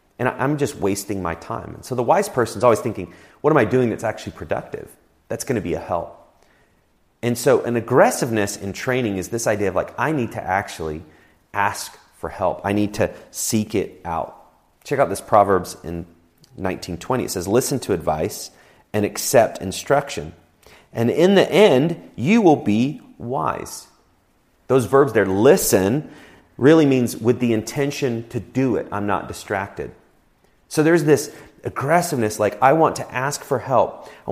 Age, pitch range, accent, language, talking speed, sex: 30-49, 95-125 Hz, American, English, 175 wpm, male